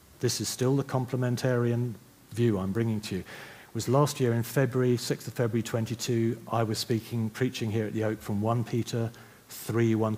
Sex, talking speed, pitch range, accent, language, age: male, 195 wpm, 110-135 Hz, British, English, 40-59